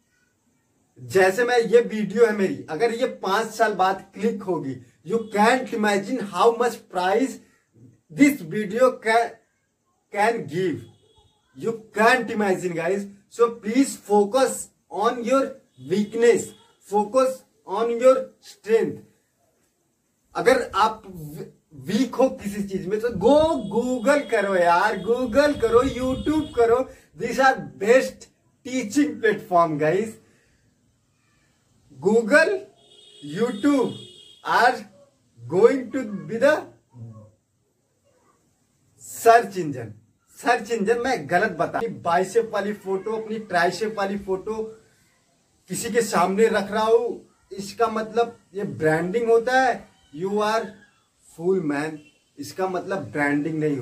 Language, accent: Hindi, native